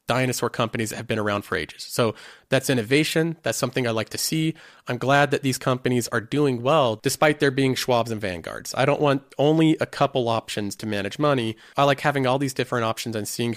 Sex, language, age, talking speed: male, English, 30-49, 220 wpm